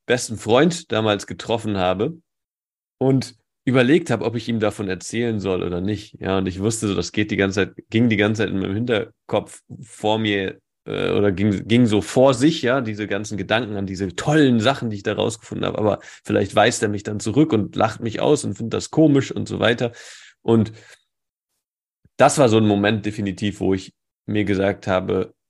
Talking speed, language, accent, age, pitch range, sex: 200 wpm, German, German, 30-49, 95-115 Hz, male